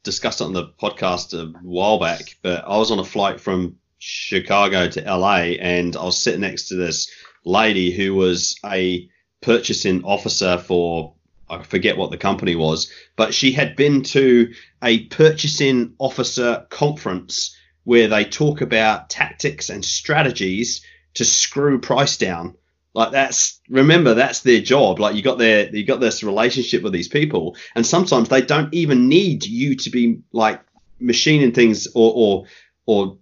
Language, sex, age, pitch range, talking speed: English, male, 30-49, 95-135 Hz, 160 wpm